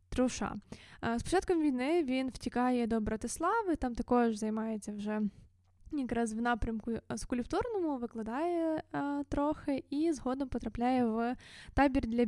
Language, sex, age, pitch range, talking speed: Ukrainian, female, 20-39, 230-280 Hz, 125 wpm